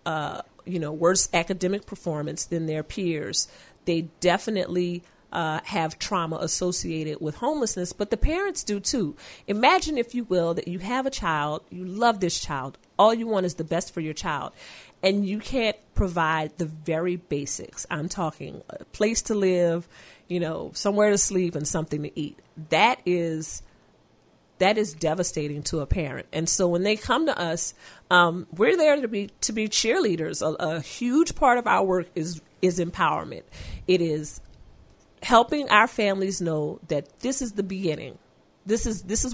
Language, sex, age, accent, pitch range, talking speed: English, female, 40-59, American, 160-205 Hz, 170 wpm